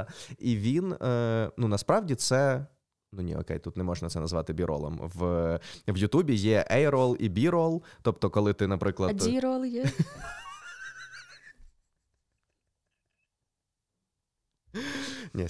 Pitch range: 90-125 Hz